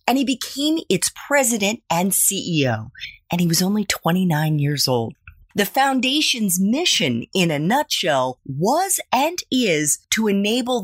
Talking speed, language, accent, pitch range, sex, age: 140 wpm, English, American, 160-245 Hz, female, 30-49